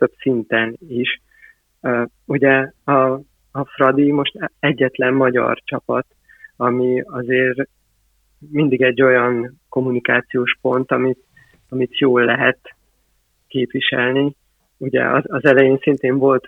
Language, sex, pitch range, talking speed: Hungarian, male, 125-135 Hz, 110 wpm